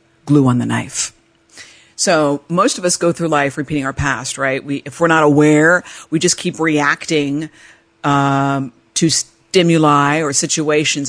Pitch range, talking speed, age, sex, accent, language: 140-180 Hz, 155 wpm, 50-69, female, American, English